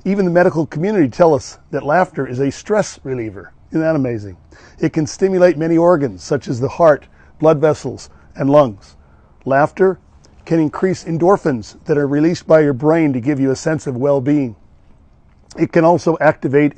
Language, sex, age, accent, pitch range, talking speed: English, male, 40-59, American, 130-170 Hz, 175 wpm